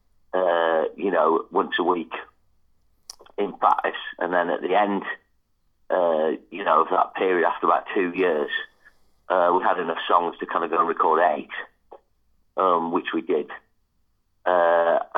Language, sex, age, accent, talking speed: English, male, 40-59, British, 160 wpm